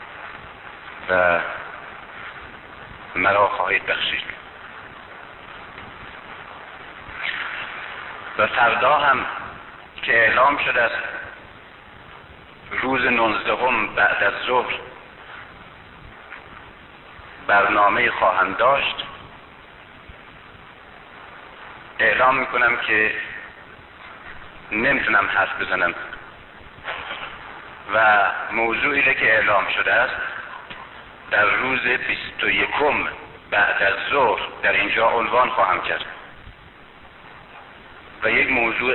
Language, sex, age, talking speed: Persian, male, 60-79, 70 wpm